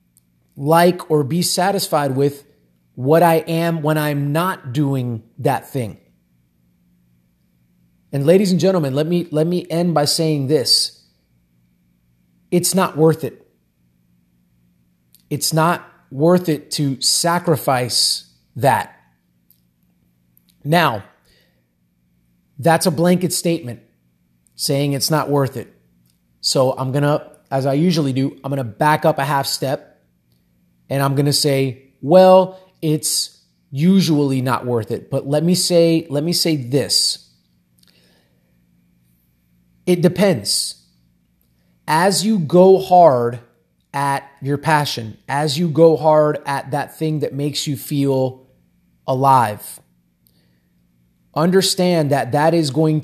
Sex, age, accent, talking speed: male, 30-49, American, 120 wpm